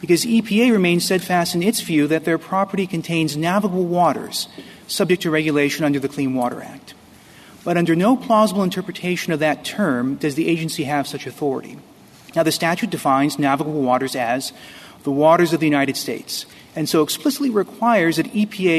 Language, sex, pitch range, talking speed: English, male, 150-195 Hz, 170 wpm